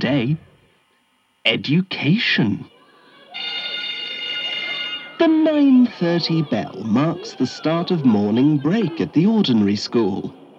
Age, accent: 50-69, British